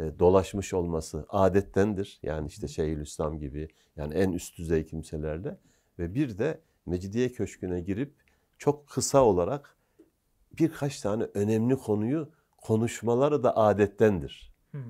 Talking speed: 115 wpm